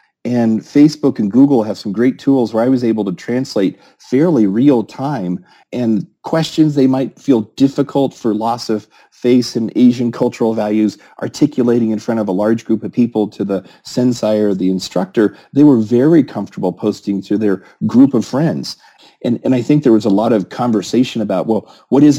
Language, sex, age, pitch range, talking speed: English, male, 40-59, 105-125 Hz, 190 wpm